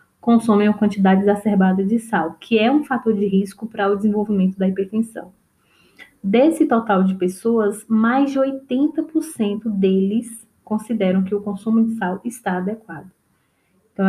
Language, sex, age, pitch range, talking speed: Portuguese, female, 10-29, 190-230 Hz, 145 wpm